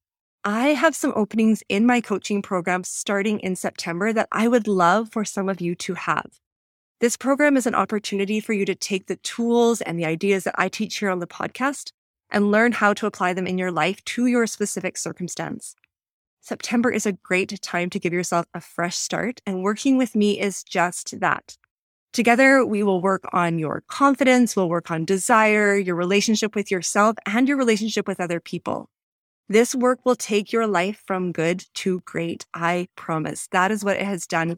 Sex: female